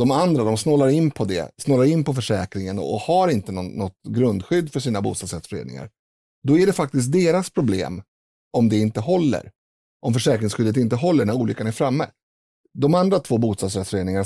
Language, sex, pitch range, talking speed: Swedish, male, 100-145 Hz, 170 wpm